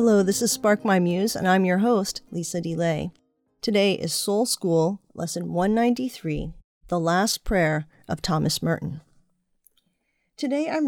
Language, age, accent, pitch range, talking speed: English, 40-59, American, 165-200 Hz, 145 wpm